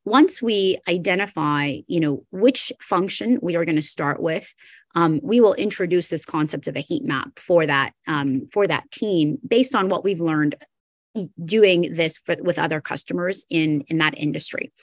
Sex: female